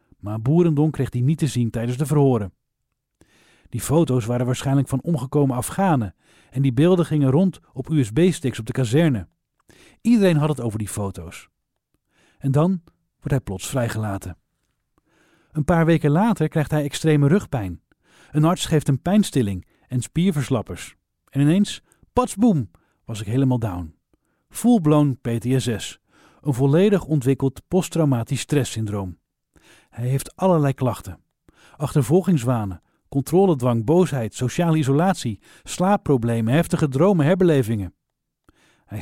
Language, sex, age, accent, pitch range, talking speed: English, male, 40-59, Dutch, 115-155 Hz, 130 wpm